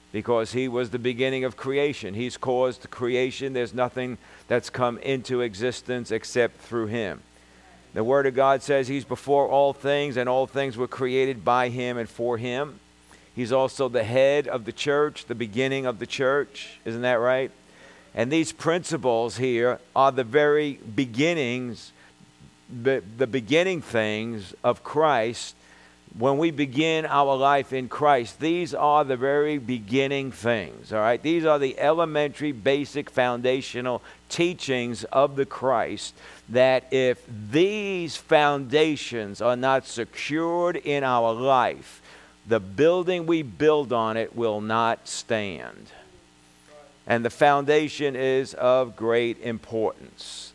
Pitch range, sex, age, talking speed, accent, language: 115-140 Hz, male, 50-69, 140 wpm, American, English